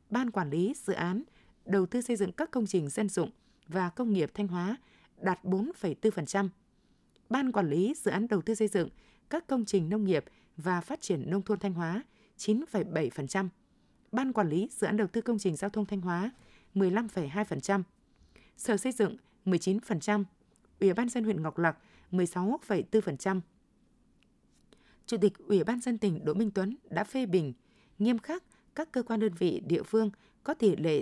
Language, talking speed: Vietnamese, 180 wpm